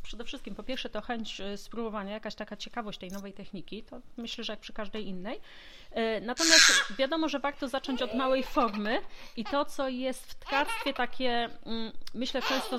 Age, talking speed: 30-49, 175 wpm